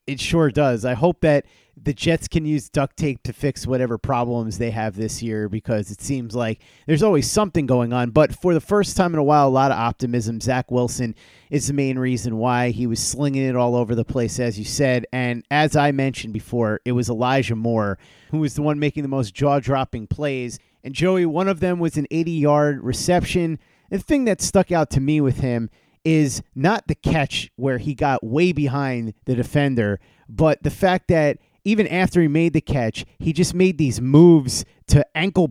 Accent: American